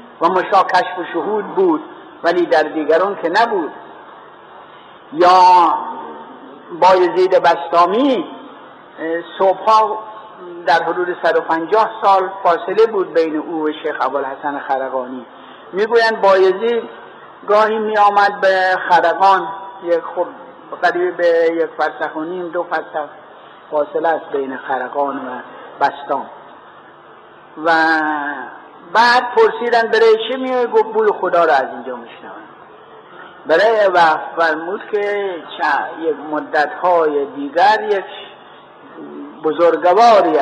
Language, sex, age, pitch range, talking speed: Persian, male, 60-79, 155-205 Hz, 105 wpm